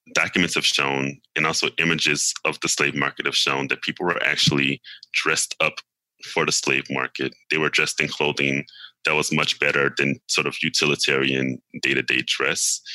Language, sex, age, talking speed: English, male, 20-39, 180 wpm